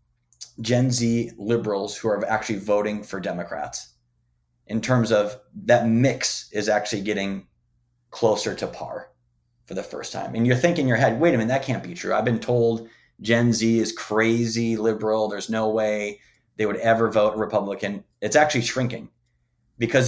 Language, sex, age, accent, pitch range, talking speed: English, male, 30-49, American, 105-125 Hz, 170 wpm